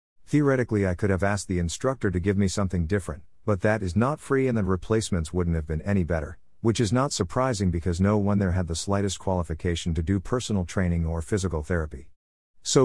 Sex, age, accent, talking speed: male, 50-69, American, 210 wpm